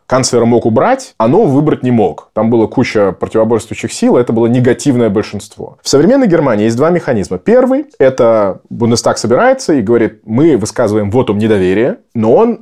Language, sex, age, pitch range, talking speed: Russian, male, 20-39, 105-135 Hz, 175 wpm